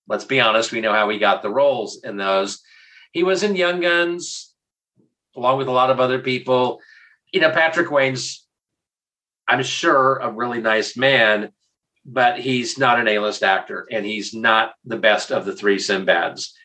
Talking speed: 175 wpm